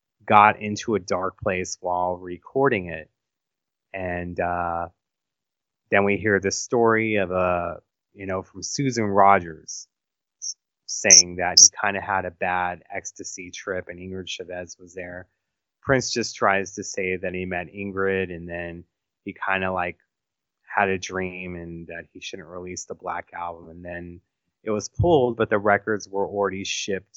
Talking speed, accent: 165 wpm, American